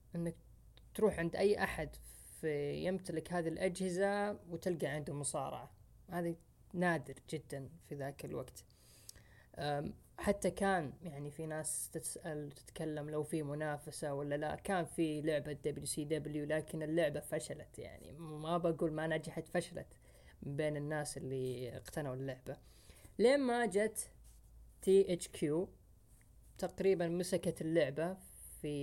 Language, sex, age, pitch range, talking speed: Arabic, female, 20-39, 140-170 Hz, 120 wpm